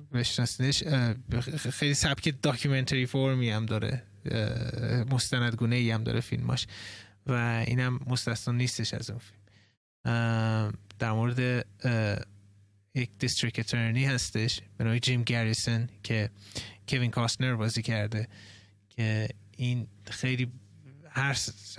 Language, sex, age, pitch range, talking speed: Persian, male, 20-39, 110-135 Hz, 95 wpm